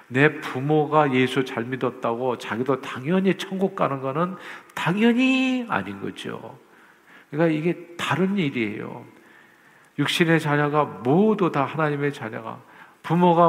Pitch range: 125-165 Hz